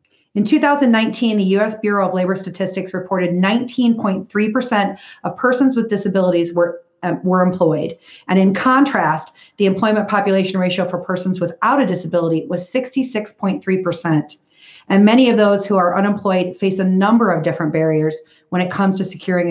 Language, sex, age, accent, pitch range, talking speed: English, female, 40-59, American, 175-215 Hz, 150 wpm